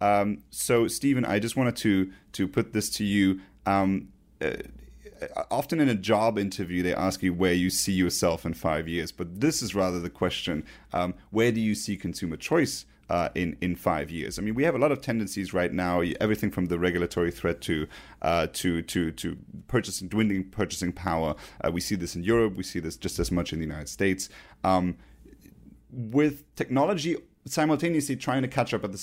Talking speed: 200 wpm